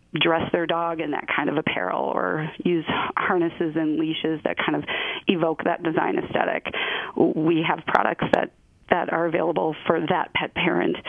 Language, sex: English, female